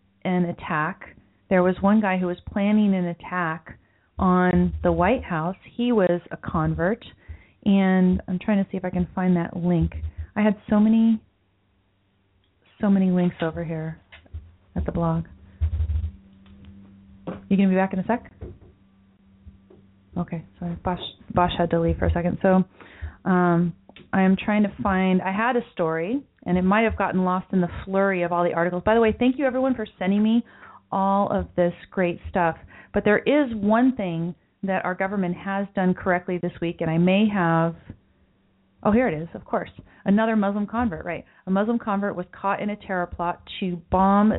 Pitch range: 165-200 Hz